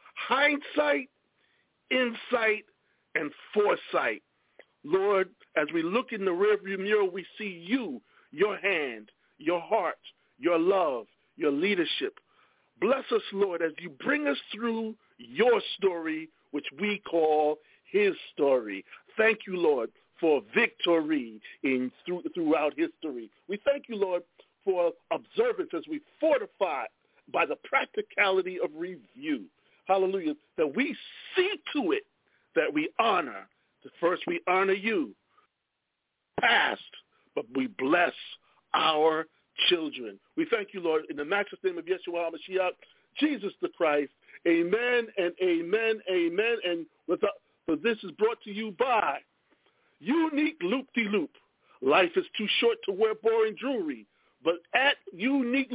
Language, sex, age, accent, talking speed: English, male, 50-69, American, 130 wpm